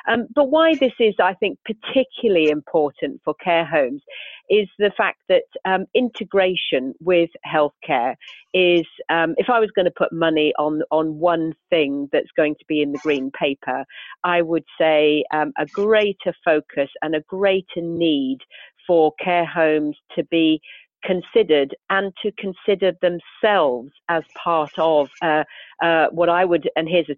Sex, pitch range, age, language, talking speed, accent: female, 155-215 Hz, 40-59, English, 160 wpm, British